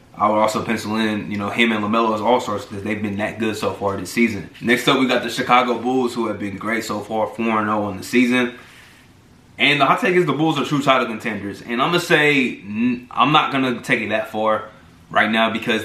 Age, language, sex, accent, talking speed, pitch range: 20-39, English, male, American, 250 wpm, 105-125 Hz